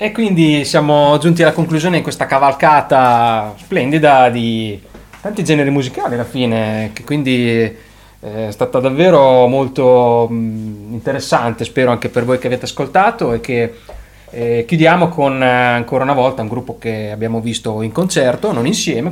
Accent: native